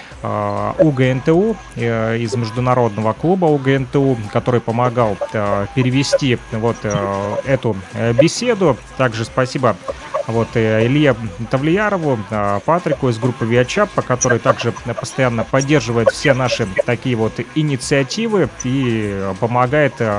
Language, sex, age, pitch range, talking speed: Russian, male, 30-49, 115-140 Hz, 90 wpm